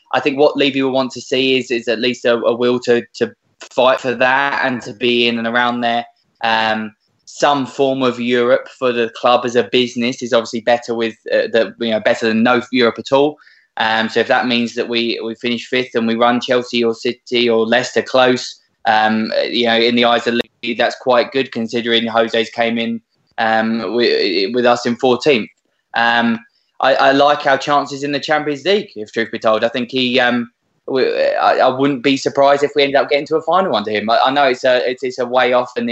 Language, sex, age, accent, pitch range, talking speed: English, male, 20-39, British, 115-130 Hz, 220 wpm